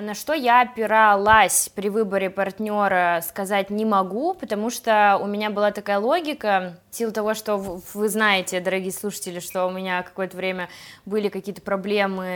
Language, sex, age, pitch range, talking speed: Russian, female, 20-39, 190-230 Hz, 165 wpm